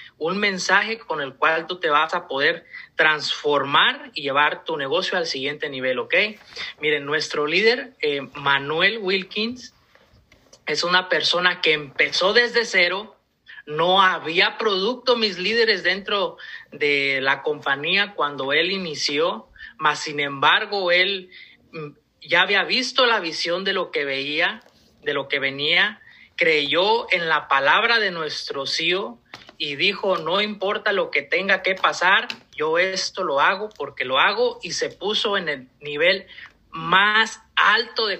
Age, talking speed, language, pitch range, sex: 30-49, 145 wpm, Spanish, 150-250 Hz, male